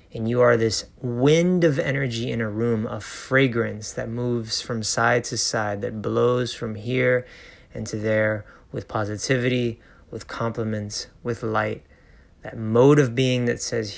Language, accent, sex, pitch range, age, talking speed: English, American, male, 100-120 Hz, 30-49, 160 wpm